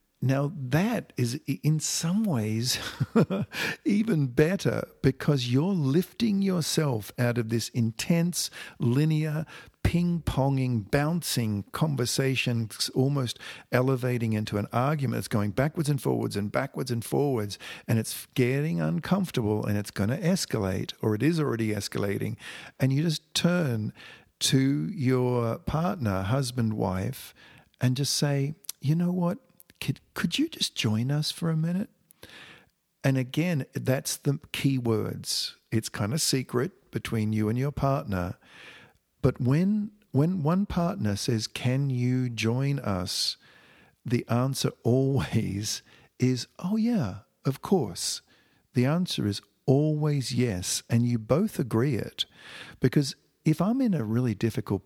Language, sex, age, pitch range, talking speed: English, male, 50-69, 110-155 Hz, 135 wpm